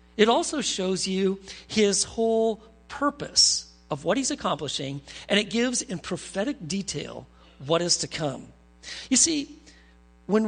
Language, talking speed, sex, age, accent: English, 135 wpm, male, 40-59, American